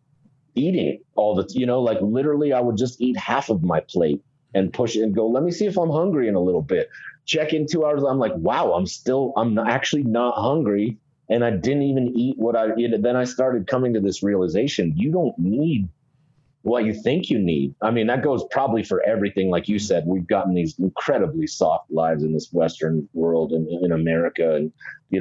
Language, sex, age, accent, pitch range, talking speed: English, male, 30-49, American, 90-135 Hz, 220 wpm